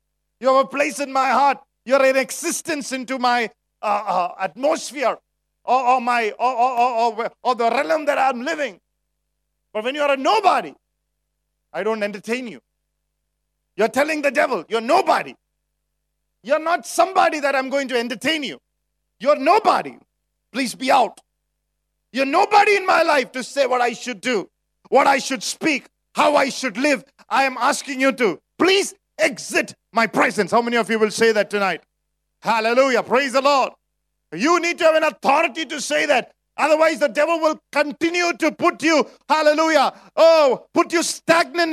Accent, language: Indian, English